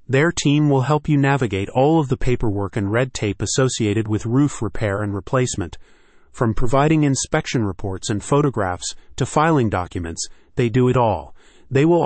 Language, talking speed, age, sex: English, 170 wpm, 30-49, male